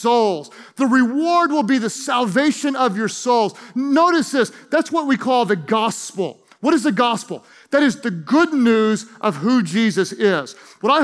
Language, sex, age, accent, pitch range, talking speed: English, male, 40-59, American, 225-275 Hz, 175 wpm